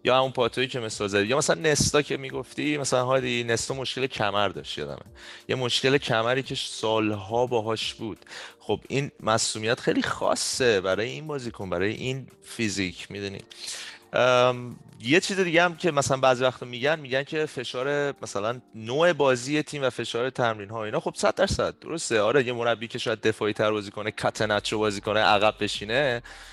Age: 30-49